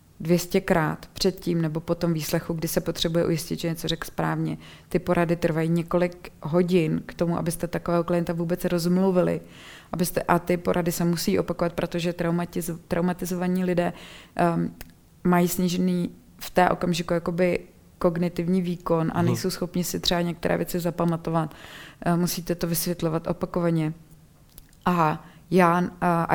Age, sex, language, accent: 20-39, female, Czech, native